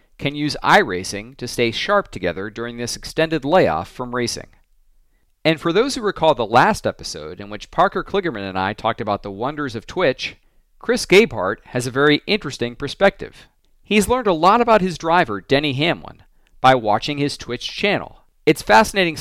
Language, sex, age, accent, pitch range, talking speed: English, male, 40-59, American, 115-160 Hz, 175 wpm